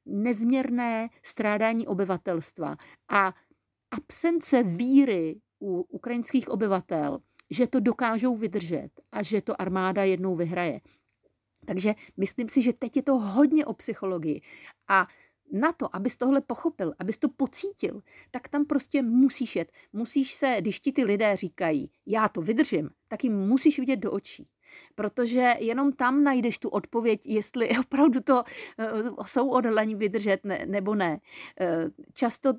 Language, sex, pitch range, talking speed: Czech, female, 185-245 Hz, 135 wpm